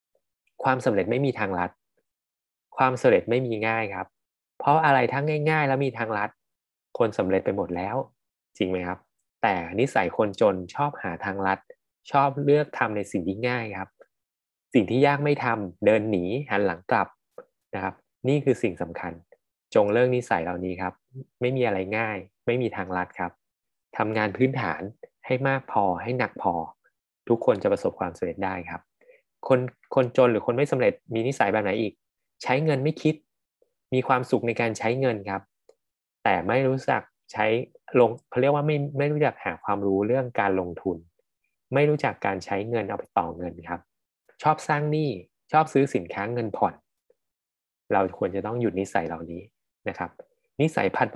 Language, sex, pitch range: Thai, male, 95-135 Hz